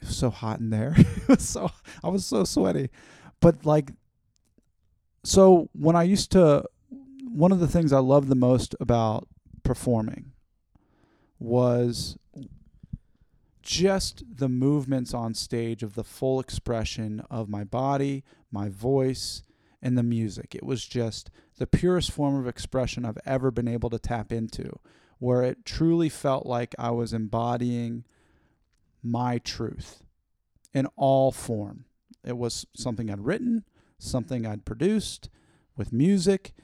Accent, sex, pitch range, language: American, male, 115-155 Hz, English